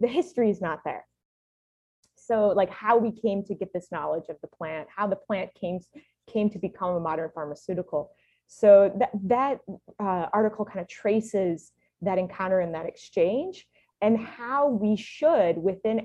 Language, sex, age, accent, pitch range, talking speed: English, female, 20-39, American, 185-230 Hz, 170 wpm